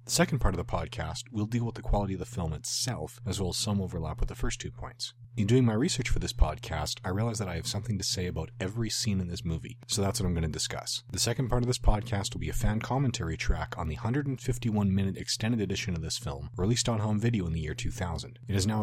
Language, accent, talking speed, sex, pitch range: English, American, 270 wpm, male, 95-125 Hz